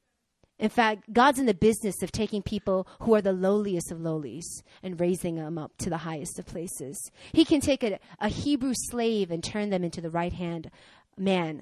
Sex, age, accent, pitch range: female, 30-49, American, 185-255 Hz